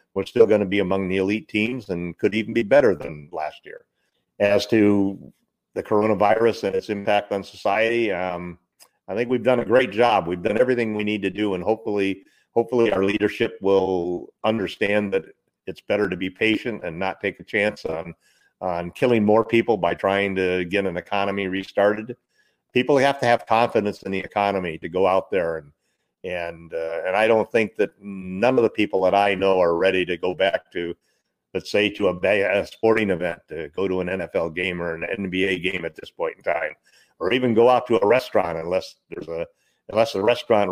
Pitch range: 95-110 Hz